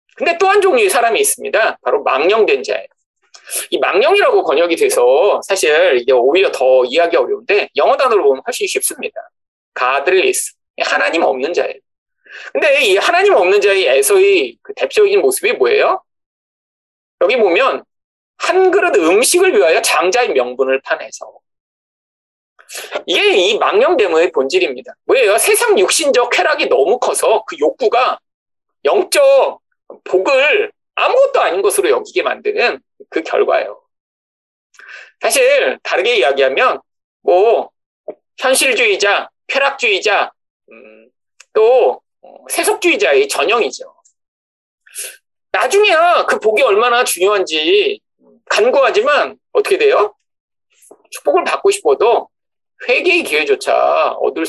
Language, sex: Korean, male